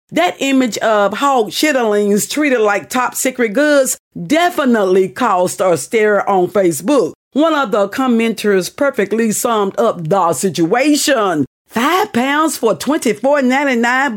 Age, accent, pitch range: 40-59, American, 200-285 Hz